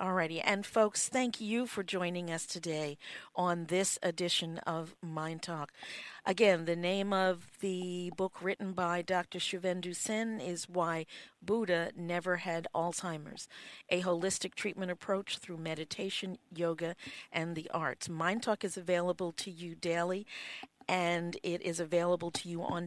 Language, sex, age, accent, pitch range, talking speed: English, female, 50-69, American, 165-190 Hz, 145 wpm